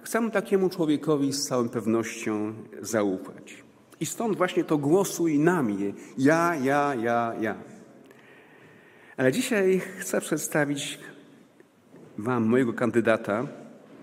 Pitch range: 115-150 Hz